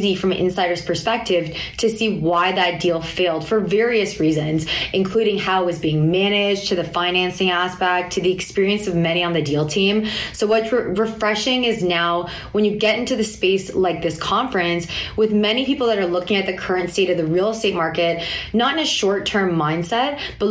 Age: 20-39